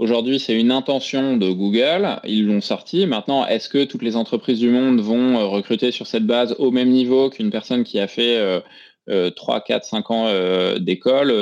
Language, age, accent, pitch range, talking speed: French, 20-39, French, 110-130 Hz, 200 wpm